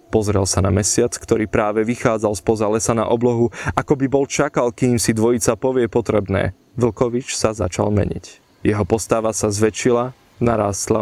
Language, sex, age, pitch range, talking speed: Slovak, male, 20-39, 105-125 Hz, 160 wpm